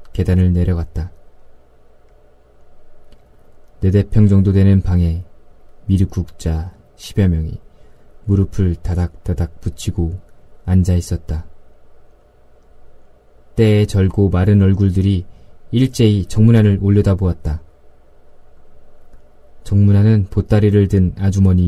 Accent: native